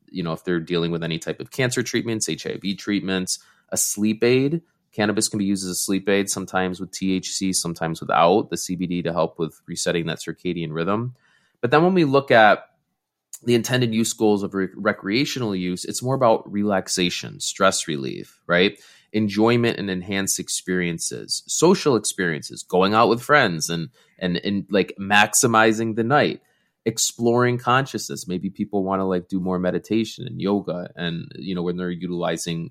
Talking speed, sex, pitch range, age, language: 170 wpm, male, 90-115 Hz, 20-39, English